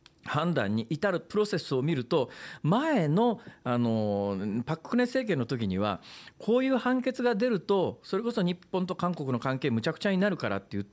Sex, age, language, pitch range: male, 40-59, Japanese, 140-220 Hz